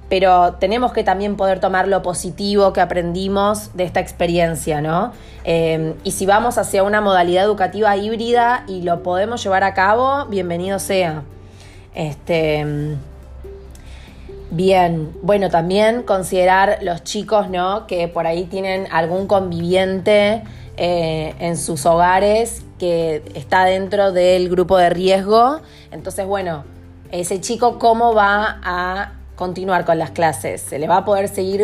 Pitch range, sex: 170-200 Hz, female